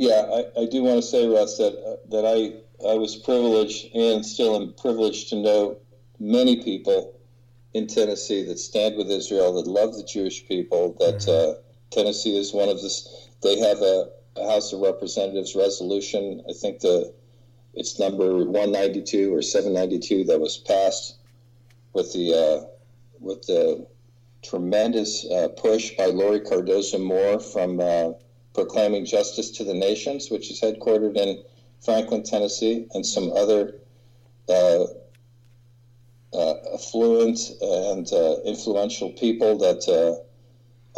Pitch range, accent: 105-130 Hz, American